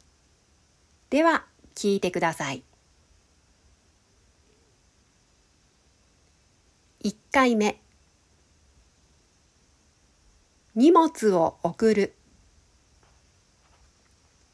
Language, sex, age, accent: Japanese, female, 40-59, native